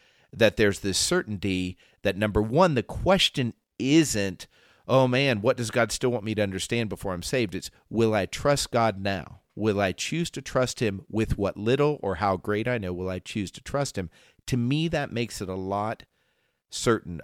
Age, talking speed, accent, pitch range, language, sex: 40-59, 200 wpm, American, 95-130 Hz, English, male